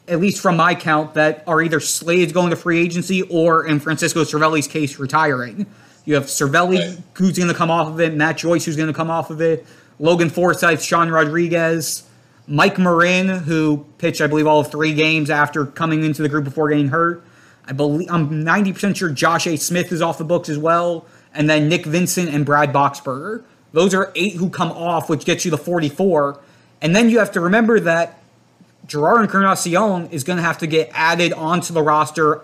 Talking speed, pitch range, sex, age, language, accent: 210 wpm, 150-175 Hz, male, 30-49, English, American